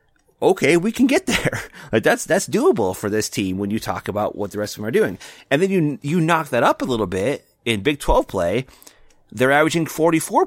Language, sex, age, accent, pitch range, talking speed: English, male, 30-49, American, 95-125 Hz, 230 wpm